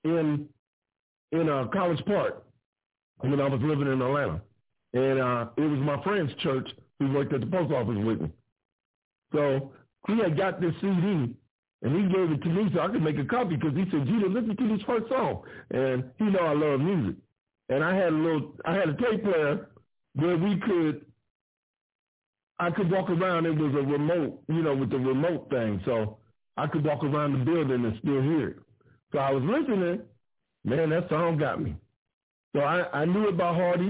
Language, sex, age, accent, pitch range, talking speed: English, male, 60-79, American, 130-180 Hz, 200 wpm